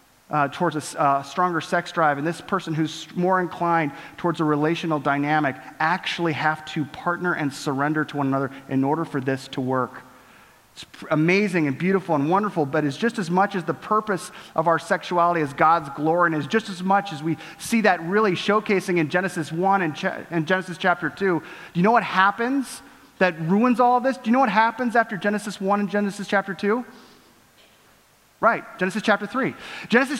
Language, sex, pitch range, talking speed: English, male, 165-225 Hz, 200 wpm